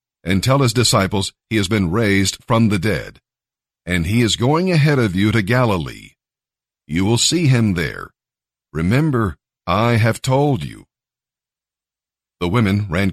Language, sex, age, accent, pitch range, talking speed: English, male, 50-69, American, 100-130 Hz, 150 wpm